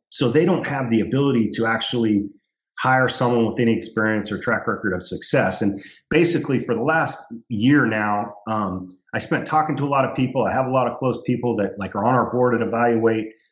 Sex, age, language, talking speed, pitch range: male, 40-59, English, 220 wpm, 110-130 Hz